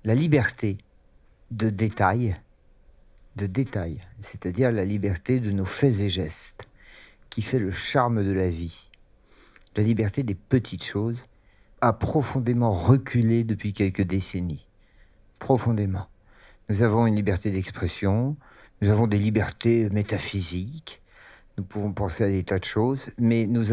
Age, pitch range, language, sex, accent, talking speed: 50-69, 100-115 Hz, French, male, French, 135 wpm